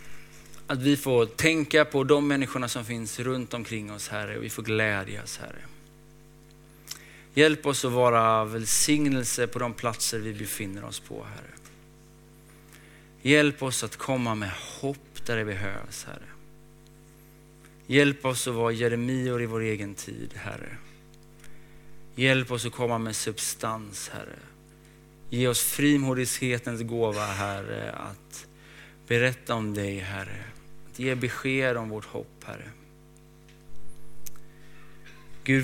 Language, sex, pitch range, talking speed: Swedish, male, 110-140 Hz, 125 wpm